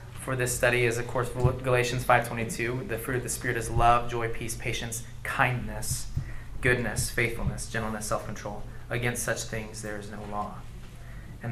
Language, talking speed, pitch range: English, 165 wpm, 115-140 Hz